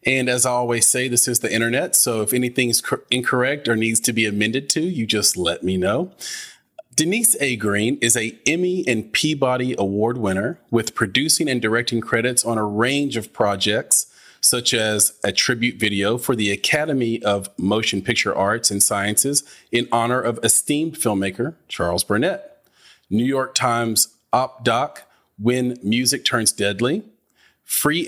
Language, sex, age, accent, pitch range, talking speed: English, male, 30-49, American, 110-130 Hz, 160 wpm